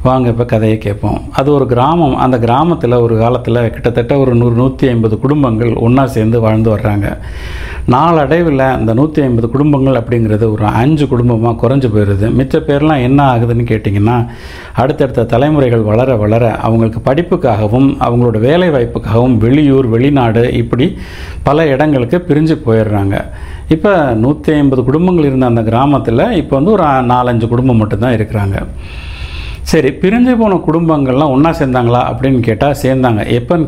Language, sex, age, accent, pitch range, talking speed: Tamil, male, 50-69, native, 115-140 Hz, 130 wpm